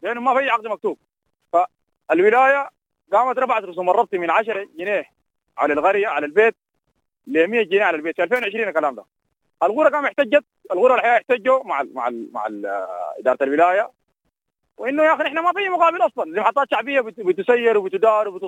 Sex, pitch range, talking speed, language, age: male, 200-265 Hz, 170 wpm, English, 30-49